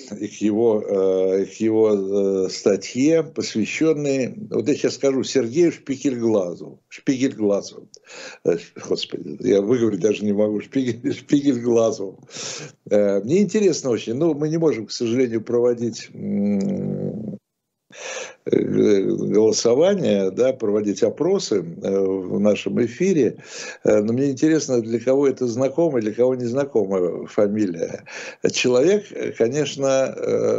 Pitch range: 110-140 Hz